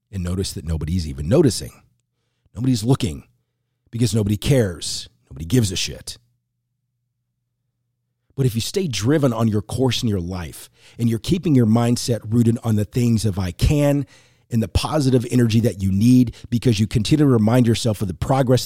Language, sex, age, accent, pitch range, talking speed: English, male, 40-59, American, 100-125 Hz, 175 wpm